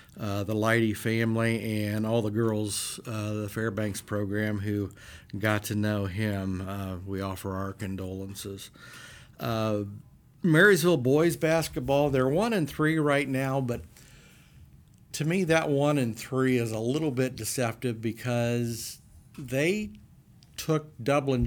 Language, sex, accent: English, male, American